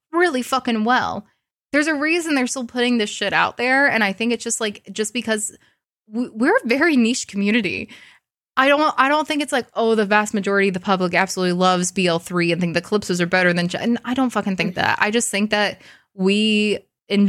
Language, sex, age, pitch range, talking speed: English, female, 20-39, 190-250 Hz, 220 wpm